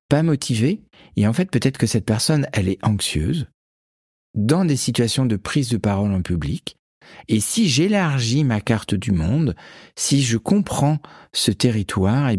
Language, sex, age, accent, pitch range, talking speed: French, male, 50-69, French, 110-145 Hz, 170 wpm